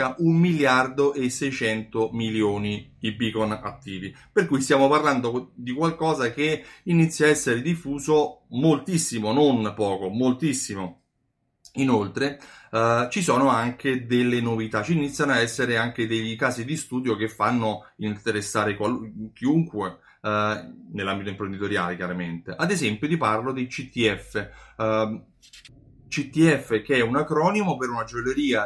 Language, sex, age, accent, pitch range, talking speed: Italian, male, 30-49, native, 110-155 Hz, 130 wpm